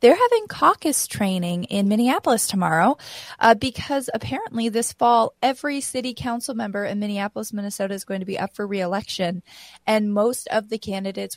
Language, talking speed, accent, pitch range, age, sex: English, 165 wpm, American, 185-230 Hz, 20-39, female